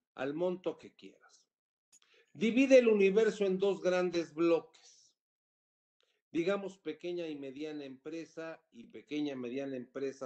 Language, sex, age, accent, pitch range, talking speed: Spanish, male, 50-69, Mexican, 155-220 Hz, 125 wpm